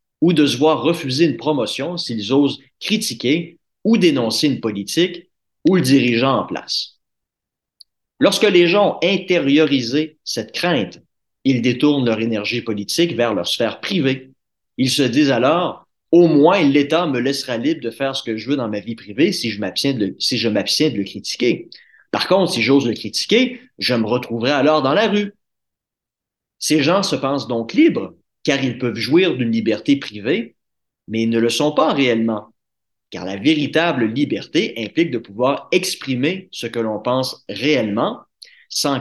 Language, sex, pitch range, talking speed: French, male, 115-165 Hz, 170 wpm